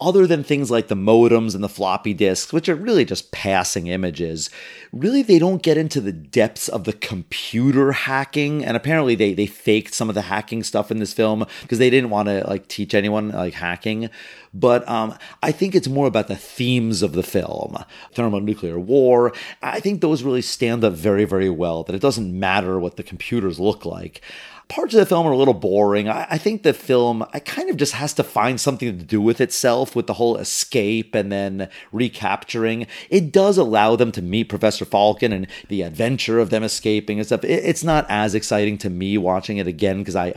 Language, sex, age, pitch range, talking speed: English, male, 30-49, 100-130 Hz, 210 wpm